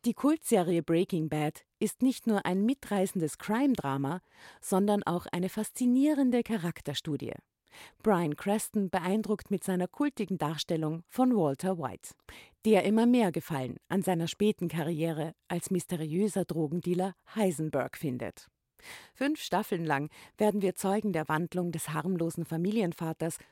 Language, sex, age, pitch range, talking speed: German, female, 50-69, 165-215 Hz, 125 wpm